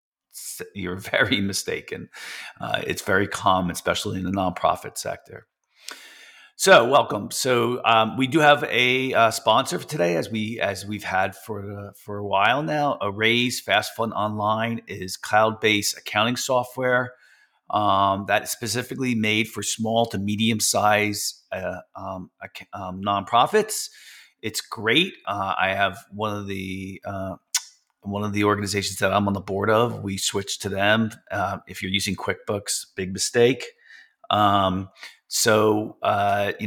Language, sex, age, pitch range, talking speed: English, male, 40-59, 100-115 Hz, 150 wpm